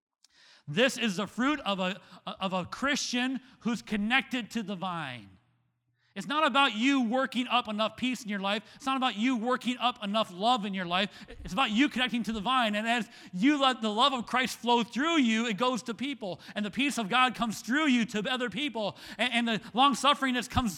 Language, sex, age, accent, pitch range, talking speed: English, male, 30-49, American, 175-250 Hz, 210 wpm